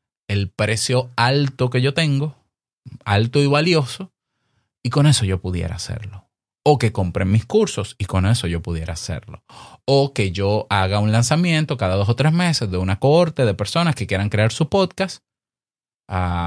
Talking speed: 175 wpm